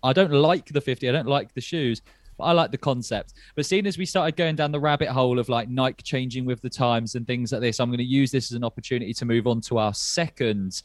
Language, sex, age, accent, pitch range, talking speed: English, male, 20-39, British, 120-145 Hz, 275 wpm